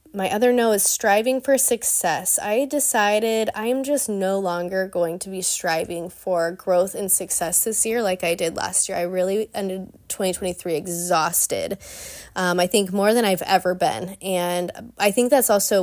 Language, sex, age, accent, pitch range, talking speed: English, female, 20-39, American, 180-210 Hz, 175 wpm